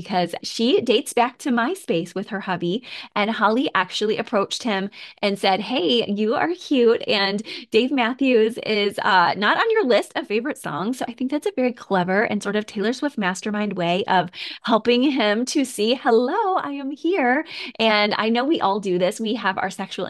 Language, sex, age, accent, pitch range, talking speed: English, female, 20-39, American, 185-240 Hz, 195 wpm